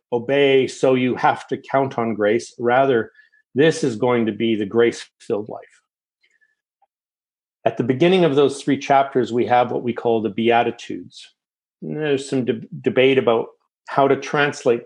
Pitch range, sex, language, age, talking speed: 120-165 Hz, male, English, 50-69, 155 wpm